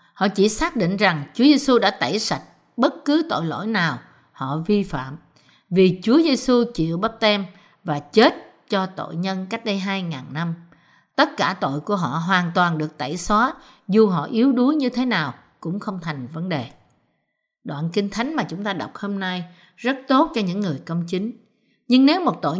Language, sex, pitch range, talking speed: Vietnamese, female, 165-235 Hz, 195 wpm